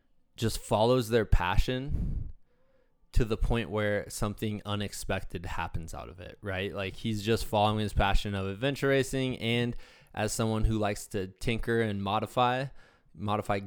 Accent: American